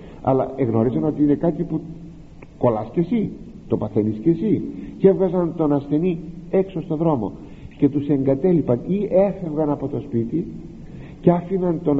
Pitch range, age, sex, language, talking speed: 105-160 Hz, 60-79, male, Greek, 155 wpm